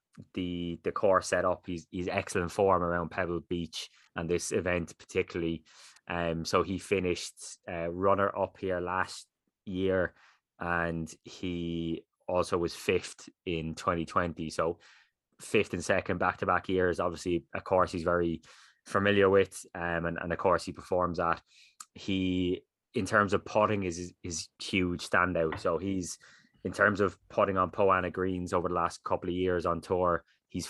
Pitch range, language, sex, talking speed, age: 85-95 Hz, English, male, 160 wpm, 20-39